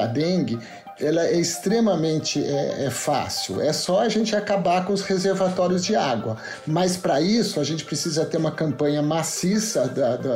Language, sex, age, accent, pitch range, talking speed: Portuguese, male, 50-69, Brazilian, 145-185 Hz, 175 wpm